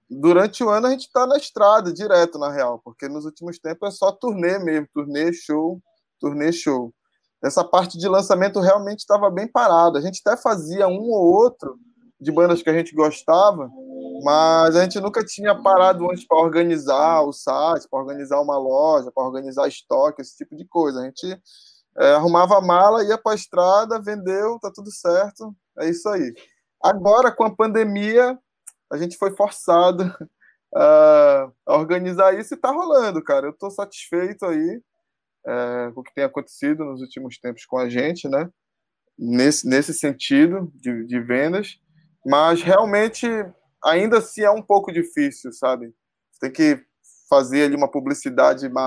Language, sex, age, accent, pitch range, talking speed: Portuguese, male, 20-39, Brazilian, 145-210 Hz, 165 wpm